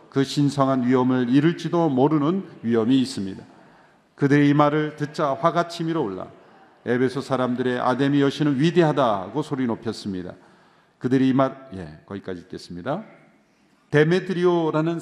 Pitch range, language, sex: 140-185 Hz, Korean, male